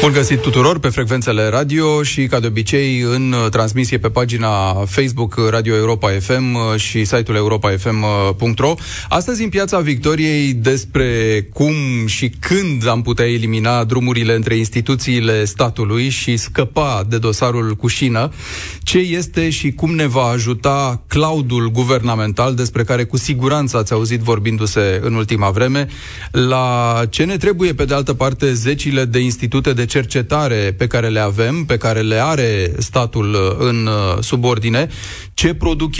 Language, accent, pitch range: Romanian, native, 115-140 Hz